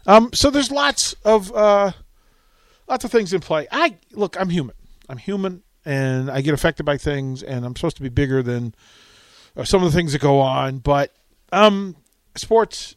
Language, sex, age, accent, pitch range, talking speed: English, male, 40-59, American, 125-150 Hz, 185 wpm